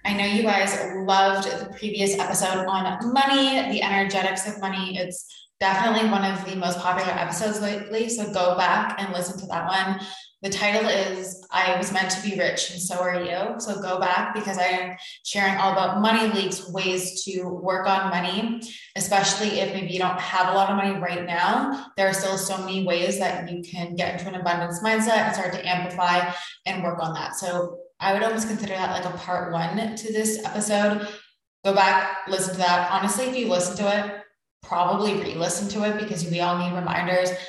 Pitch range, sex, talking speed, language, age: 180-205 Hz, female, 205 wpm, English, 20-39